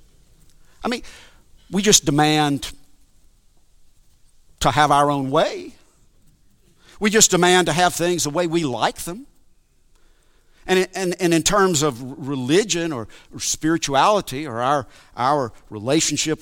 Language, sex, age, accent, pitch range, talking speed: English, male, 50-69, American, 145-205 Hz, 115 wpm